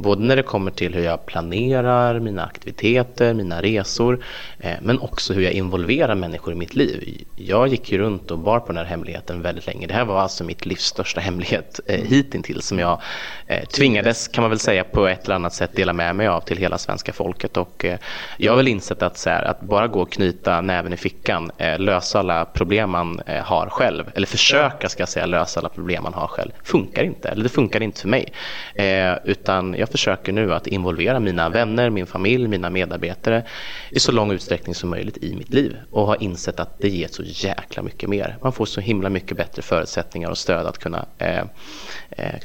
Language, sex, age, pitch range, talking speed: Swedish, male, 30-49, 90-115 Hz, 210 wpm